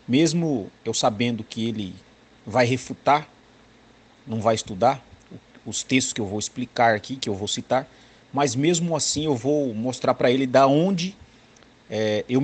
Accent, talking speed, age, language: Brazilian, 155 wpm, 50-69, Portuguese